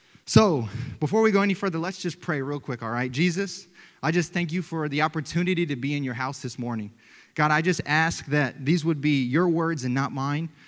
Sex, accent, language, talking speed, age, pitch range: male, American, English, 230 wpm, 20-39, 130-175 Hz